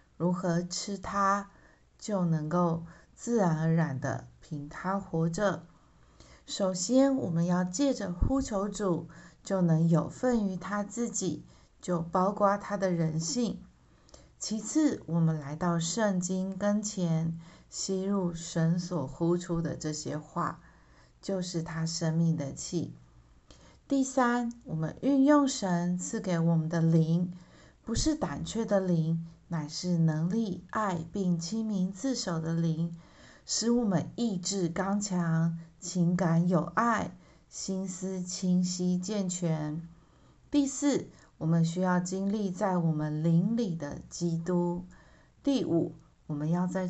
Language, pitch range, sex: Chinese, 165-195 Hz, female